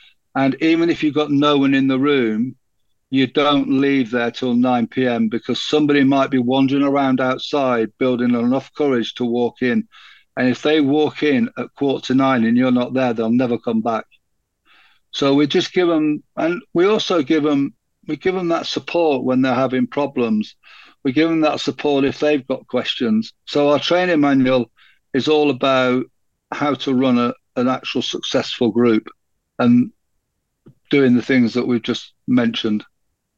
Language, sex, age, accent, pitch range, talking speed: English, male, 50-69, British, 120-150 Hz, 175 wpm